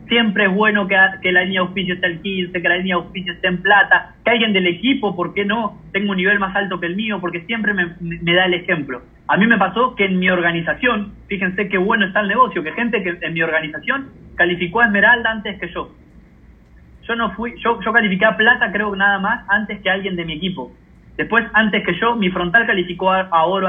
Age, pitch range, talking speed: 30-49, 175-210 Hz, 240 wpm